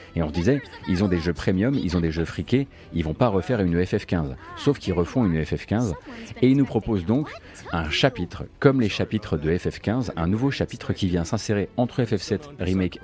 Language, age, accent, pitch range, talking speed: French, 40-59, French, 90-120 Hz, 210 wpm